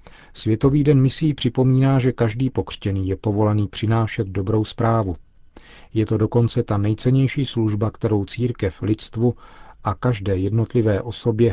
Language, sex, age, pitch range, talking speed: Czech, male, 40-59, 105-120 Hz, 130 wpm